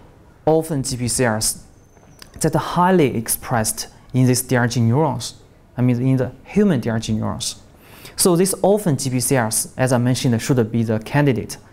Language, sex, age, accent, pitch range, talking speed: English, male, 20-39, Chinese, 115-155 Hz, 145 wpm